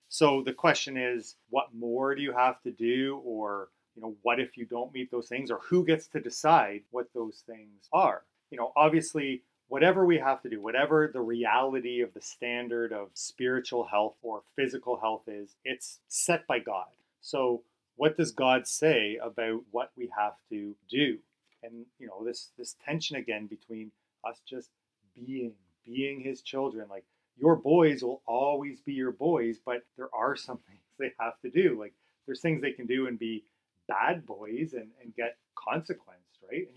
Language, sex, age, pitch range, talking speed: English, male, 30-49, 115-140 Hz, 185 wpm